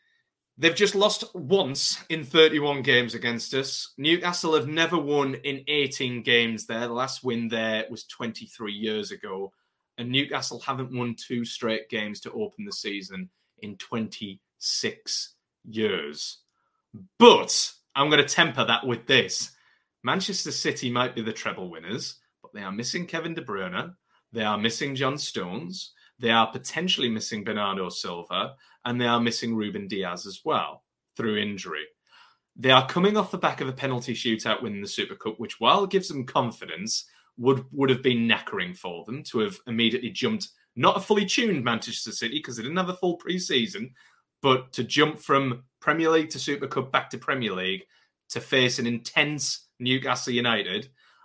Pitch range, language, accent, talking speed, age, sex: 115-160 Hz, English, British, 170 wpm, 20-39, male